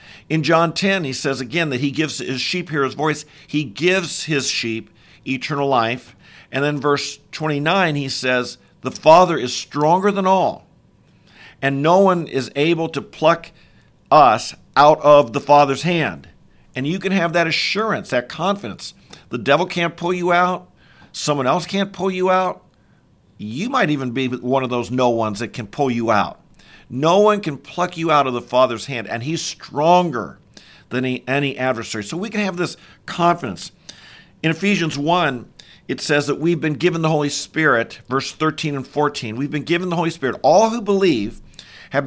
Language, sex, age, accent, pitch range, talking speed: English, male, 50-69, American, 130-170 Hz, 180 wpm